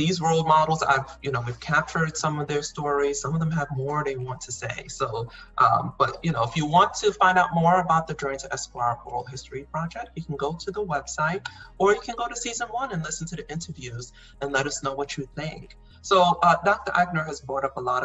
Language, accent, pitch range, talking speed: English, American, 130-170 Hz, 250 wpm